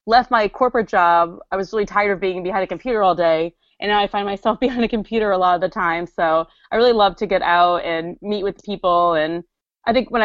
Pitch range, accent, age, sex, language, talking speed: 170-195 Hz, American, 20-39, female, English, 250 wpm